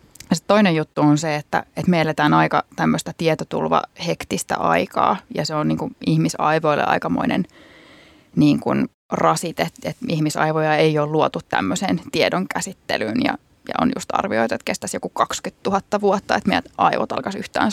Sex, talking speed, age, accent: female, 155 wpm, 20-39, native